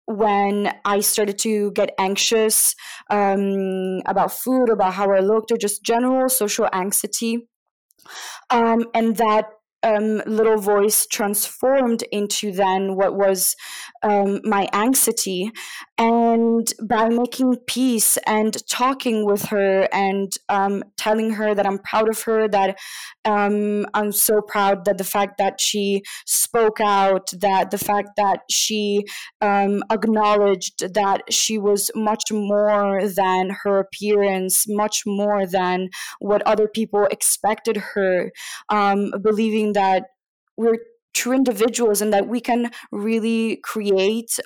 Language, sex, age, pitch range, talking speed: English, female, 20-39, 200-230 Hz, 130 wpm